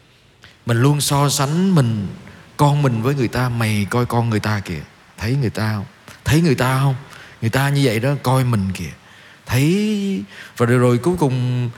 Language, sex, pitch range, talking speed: Vietnamese, male, 115-150 Hz, 195 wpm